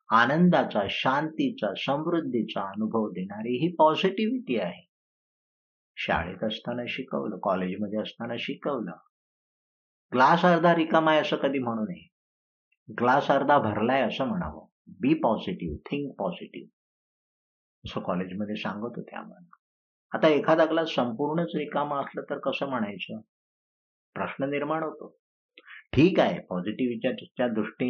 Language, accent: Marathi, native